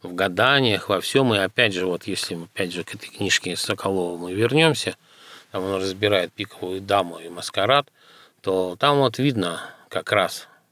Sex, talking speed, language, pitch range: male, 175 wpm, Russian, 95-115 Hz